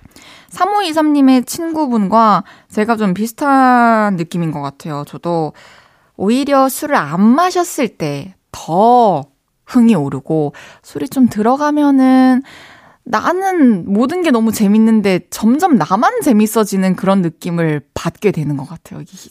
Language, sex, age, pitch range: Korean, female, 20-39, 175-255 Hz